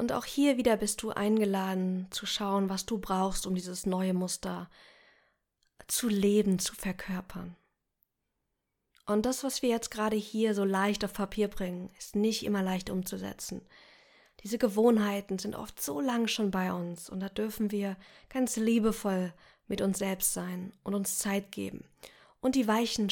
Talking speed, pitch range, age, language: 165 wpm, 185-215 Hz, 20-39, German